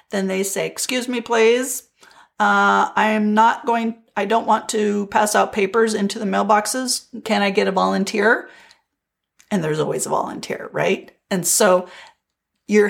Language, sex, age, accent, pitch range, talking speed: English, female, 40-59, American, 195-240 Hz, 165 wpm